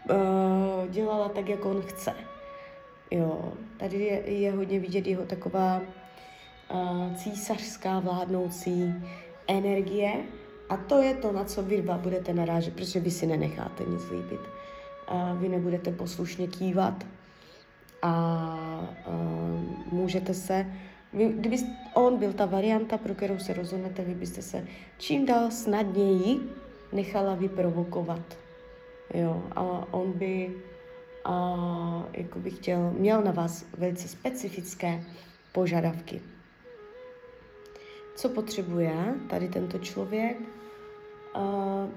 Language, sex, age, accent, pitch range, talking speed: Czech, female, 20-39, native, 180-215 Hz, 105 wpm